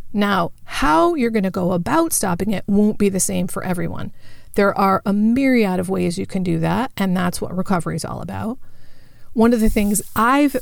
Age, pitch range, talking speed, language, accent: 40-59, 185-225 Hz, 210 wpm, English, American